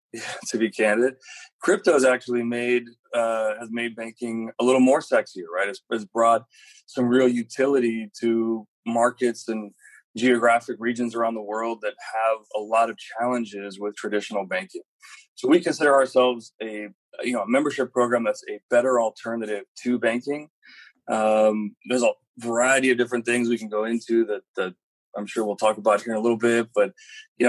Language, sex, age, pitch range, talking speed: English, male, 20-39, 110-125 Hz, 180 wpm